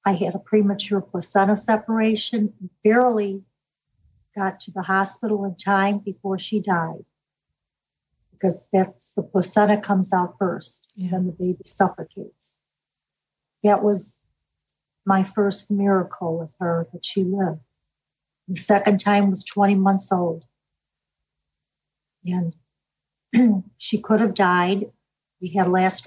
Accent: American